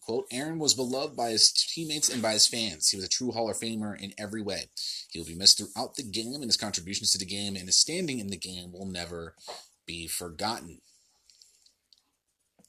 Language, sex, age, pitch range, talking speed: English, male, 30-49, 95-110 Hz, 210 wpm